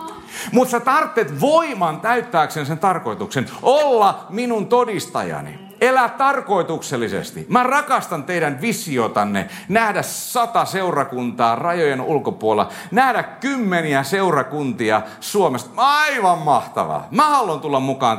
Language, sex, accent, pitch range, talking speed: Finnish, male, native, 185-290 Hz, 100 wpm